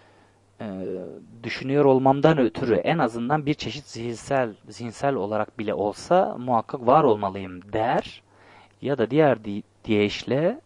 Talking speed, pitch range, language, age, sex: 120 wpm, 100-130 Hz, Turkish, 30-49, male